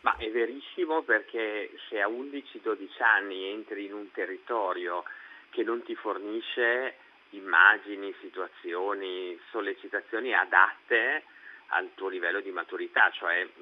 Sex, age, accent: male, 40-59, native